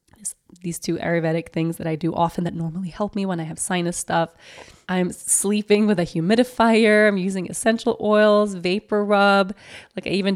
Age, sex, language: 20-39, female, English